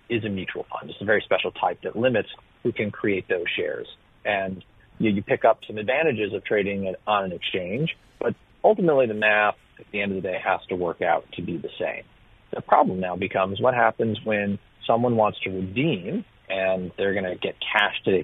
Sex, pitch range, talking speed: male, 95-120 Hz, 215 wpm